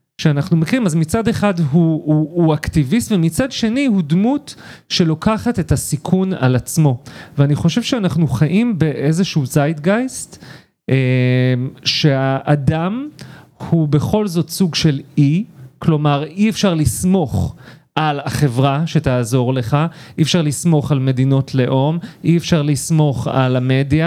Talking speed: 125 wpm